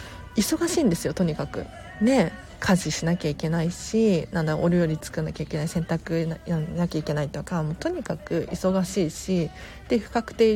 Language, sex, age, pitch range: Japanese, female, 40-59, 170-240 Hz